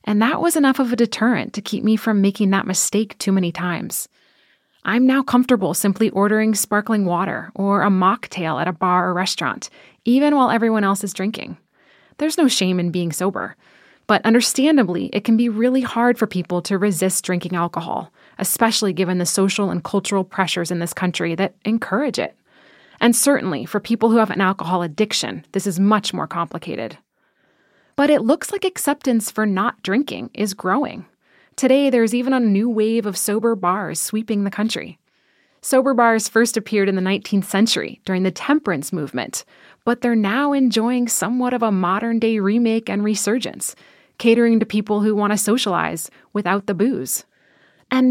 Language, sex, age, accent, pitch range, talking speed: English, female, 20-39, American, 190-235 Hz, 175 wpm